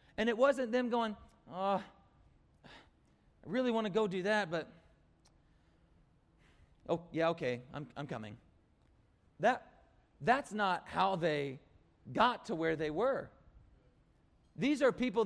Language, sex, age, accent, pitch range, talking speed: English, male, 40-59, American, 115-175 Hz, 125 wpm